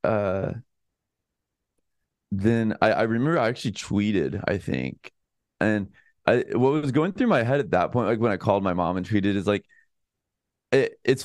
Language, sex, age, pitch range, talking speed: English, male, 20-39, 90-120 Hz, 170 wpm